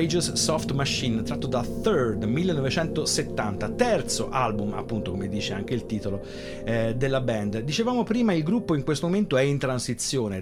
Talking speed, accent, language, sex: 155 wpm, native, Italian, male